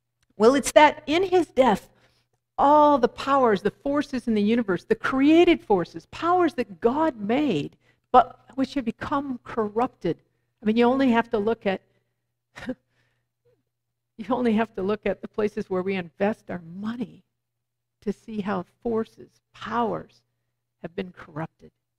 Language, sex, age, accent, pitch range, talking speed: English, female, 50-69, American, 185-265 Hz, 150 wpm